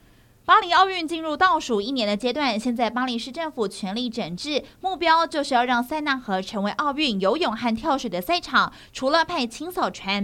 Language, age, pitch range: Chinese, 30-49, 215-290 Hz